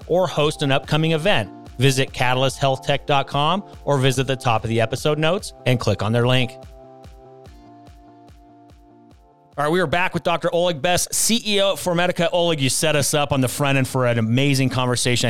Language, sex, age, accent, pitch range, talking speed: English, male, 40-59, American, 110-145 Hz, 175 wpm